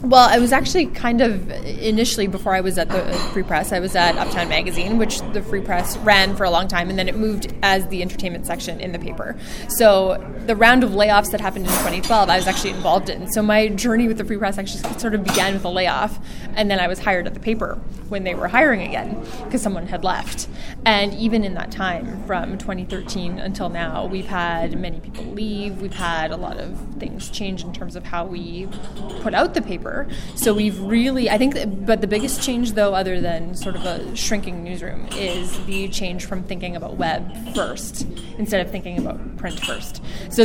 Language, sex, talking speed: English, female, 220 wpm